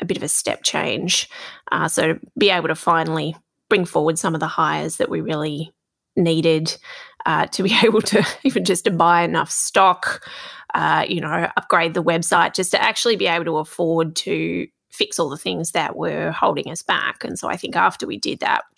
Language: English